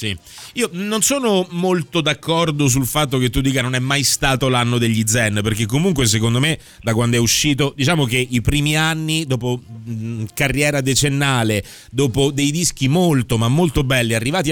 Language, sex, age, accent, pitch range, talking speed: Italian, male, 30-49, native, 115-150 Hz, 170 wpm